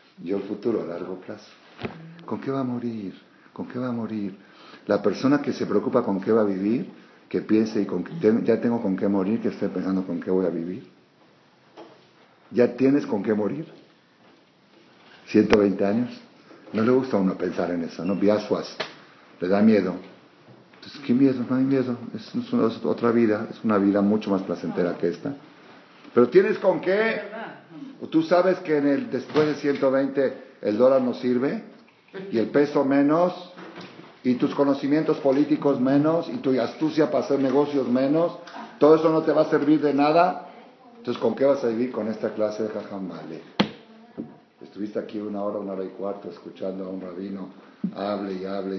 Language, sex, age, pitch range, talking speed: Spanish, male, 50-69, 100-155 Hz, 180 wpm